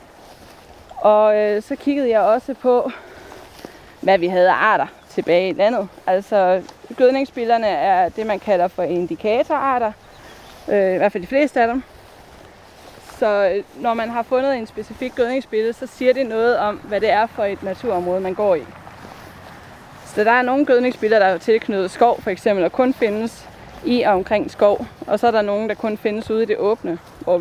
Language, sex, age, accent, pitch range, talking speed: Danish, female, 20-39, native, 195-250 Hz, 180 wpm